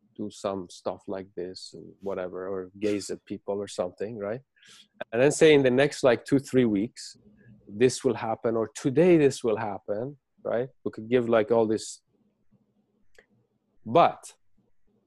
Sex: male